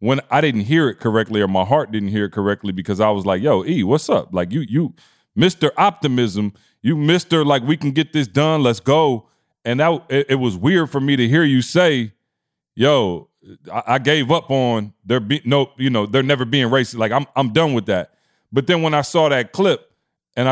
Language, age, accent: English, 30-49, American